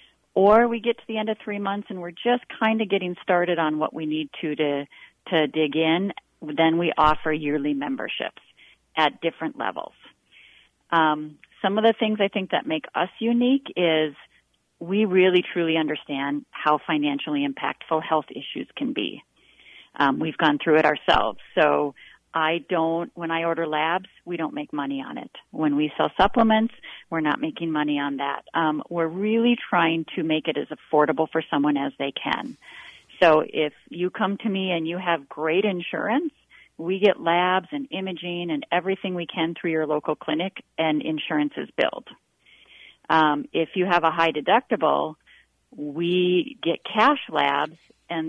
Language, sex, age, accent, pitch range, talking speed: English, female, 40-59, American, 155-195 Hz, 175 wpm